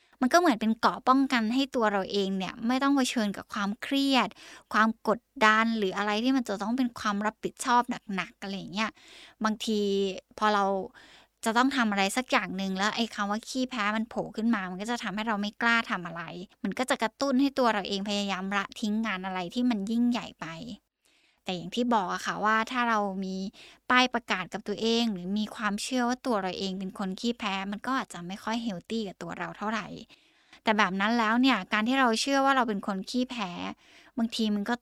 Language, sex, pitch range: Thai, female, 200-245 Hz